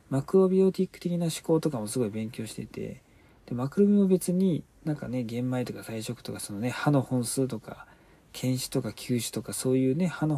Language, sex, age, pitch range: Japanese, male, 40-59, 110-150 Hz